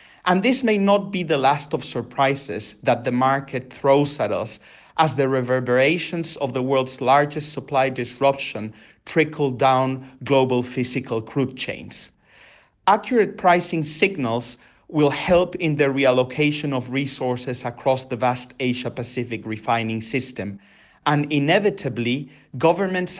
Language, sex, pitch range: English, male, 125-150 Hz